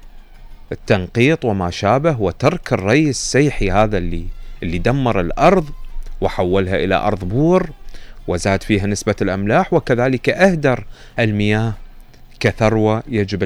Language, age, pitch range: Arabic, 30-49, 90-130 Hz